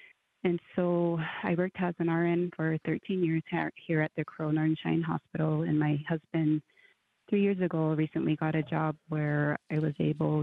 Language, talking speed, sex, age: English, 180 wpm, female, 20-39